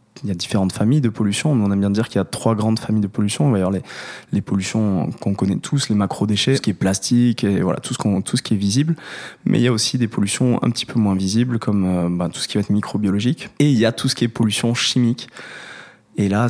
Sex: male